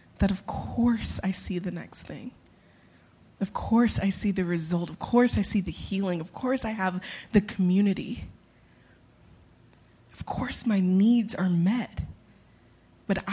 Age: 20-39